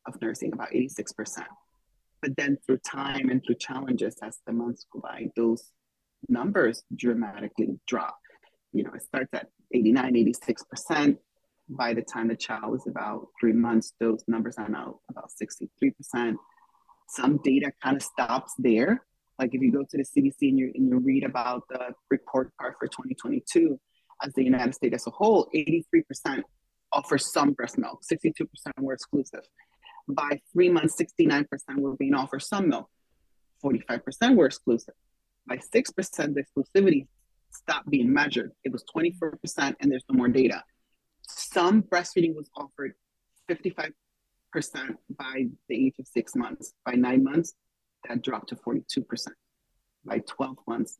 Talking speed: 150 wpm